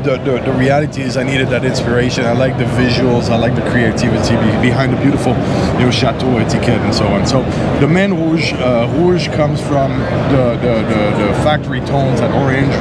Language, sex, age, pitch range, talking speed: English, male, 30-49, 115-140 Hz, 195 wpm